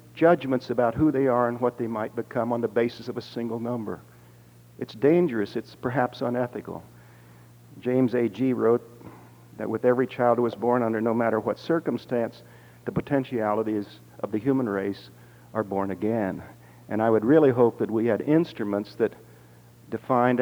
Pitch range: 105-130 Hz